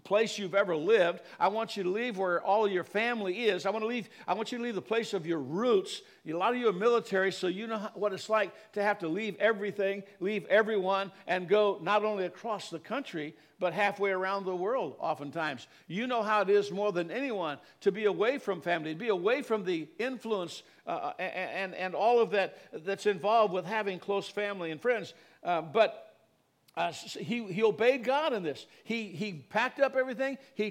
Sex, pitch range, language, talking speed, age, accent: male, 180-225 Hz, English, 215 wpm, 60-79, American